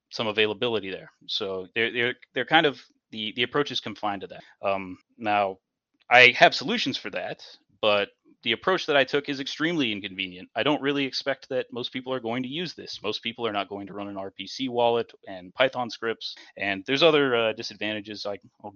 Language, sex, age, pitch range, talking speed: English, male, 30-49, 100-120 Hz, 205 wpm